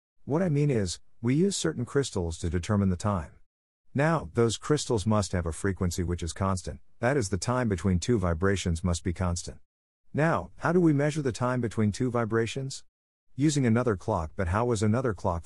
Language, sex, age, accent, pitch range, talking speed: English, male, 50-69, American, 90-120 Hz, 195 wpm